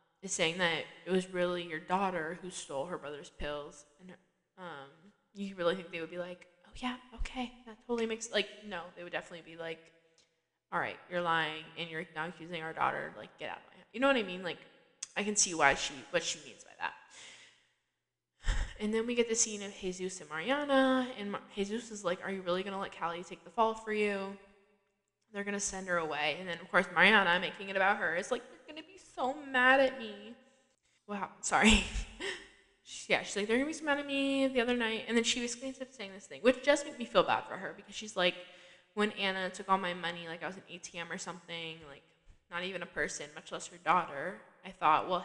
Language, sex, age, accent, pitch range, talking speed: English, female, 10-29, American, 175-215 Hz, 235 wpm